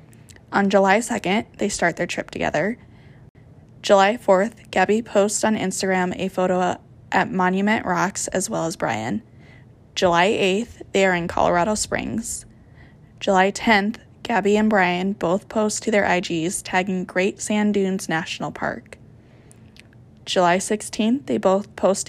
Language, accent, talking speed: English, American, 140 wpm